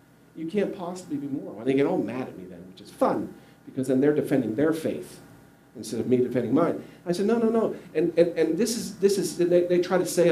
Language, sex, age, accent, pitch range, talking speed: English, male, 50-69, American, 130-190 Hz, 260 wpm